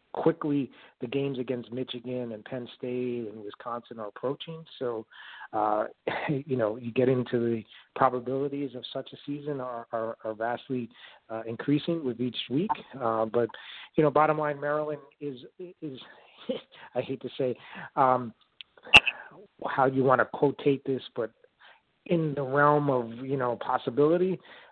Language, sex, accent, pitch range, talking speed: English, male, American, 115-140 Hz, 155 wpm